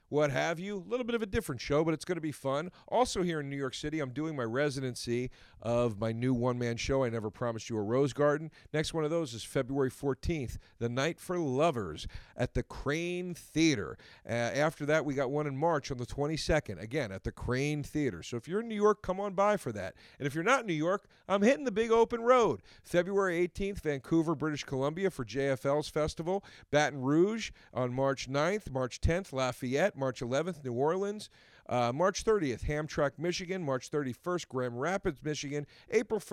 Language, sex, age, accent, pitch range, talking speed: English, male, 40-59, American, 130-185 Hz, 205 wpm